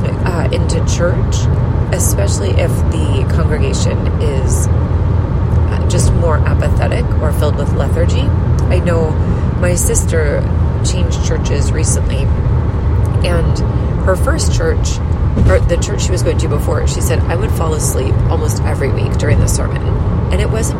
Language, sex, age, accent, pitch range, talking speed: English, female, 30-49, American, 85-105 Hz, 140 wpm